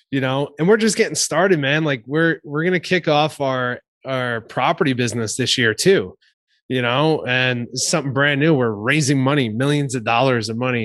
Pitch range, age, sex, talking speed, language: 120-145 Hz, 20-39, male, 195 wpm, English